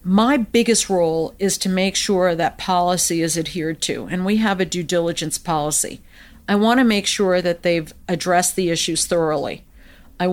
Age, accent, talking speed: 50-69, American, 180 wpm